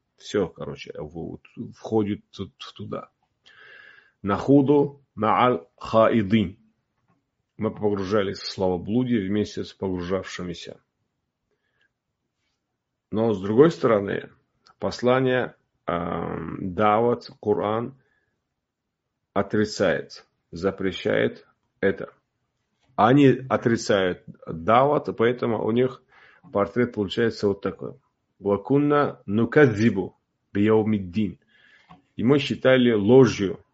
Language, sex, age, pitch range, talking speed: Russian, male, 40-59, 100-125 Hz, 70 wpm